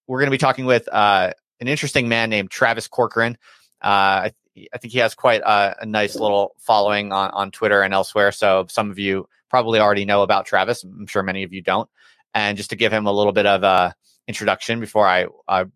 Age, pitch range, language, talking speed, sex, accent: 30-49, 100-120 Hz, English, 225 wpm, male, American